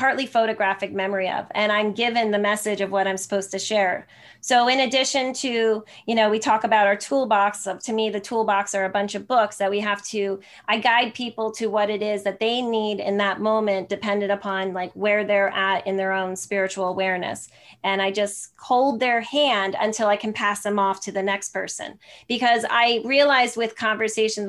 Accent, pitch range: American, 195-220 Hz